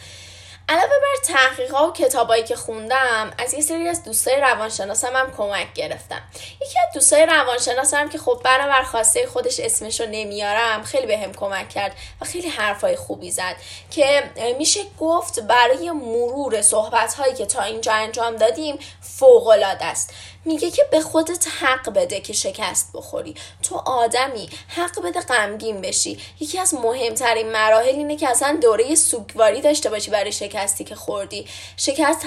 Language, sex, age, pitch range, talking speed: Persian, female, 10-29, 215-300 Hz, 155 wpm